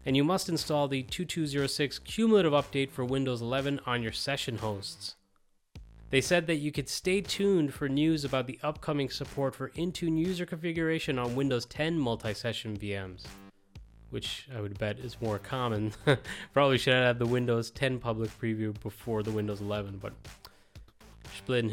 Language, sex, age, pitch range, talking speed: English, male, 30-49, 115-150 Hz, 160 wpm